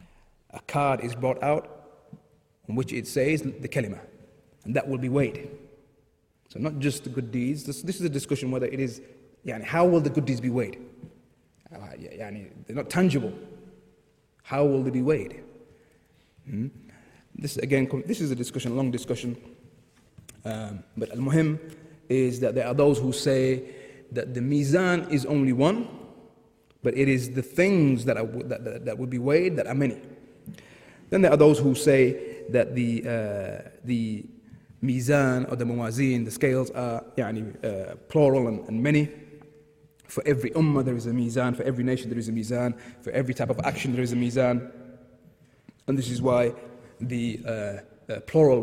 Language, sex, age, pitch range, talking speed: English, male, 30-49, 120-145 Hz, 180 wpm